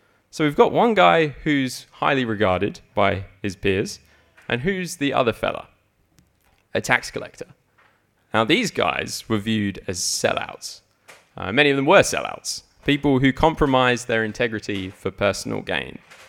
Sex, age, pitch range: male, 20-39, 100-145 Hz